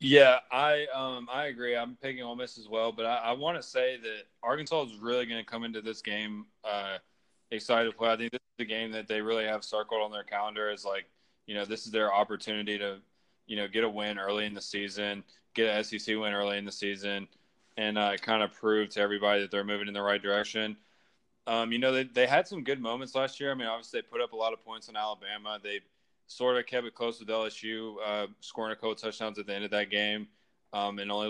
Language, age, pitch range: English, 20-39, 100-115 Hz